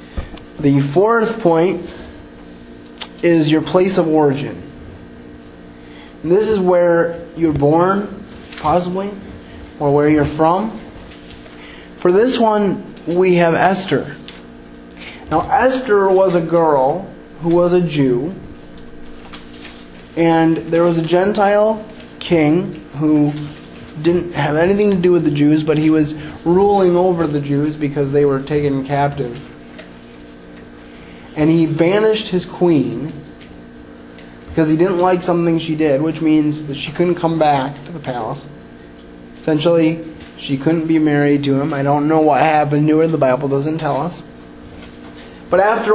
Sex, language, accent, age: male, English, American, 20-39